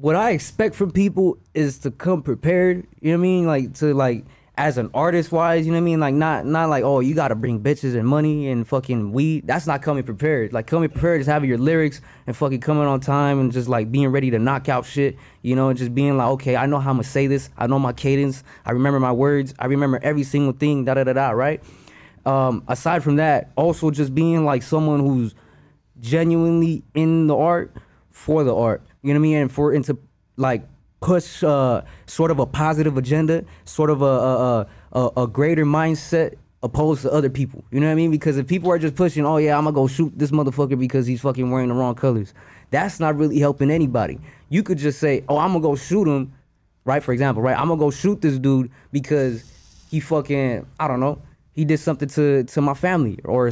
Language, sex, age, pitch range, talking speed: English, male, 20-39, 130-155 Hz, 225 wpm